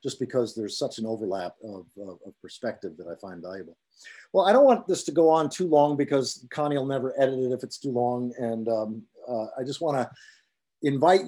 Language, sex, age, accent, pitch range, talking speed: English, male, 50-69, American, 120-145 Hz, 225 wpm